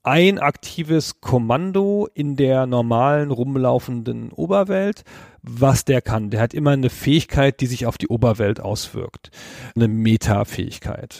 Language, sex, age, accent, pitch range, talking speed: German, male, 40-59, German, 110-145 Hz, 130 wpm